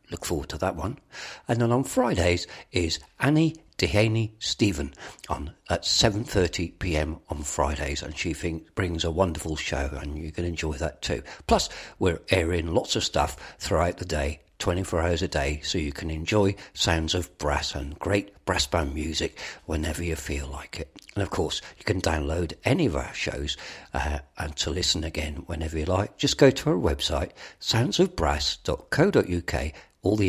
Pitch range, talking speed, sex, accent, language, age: 75-95 Hz, 170 wpm, male, British, English, 50-69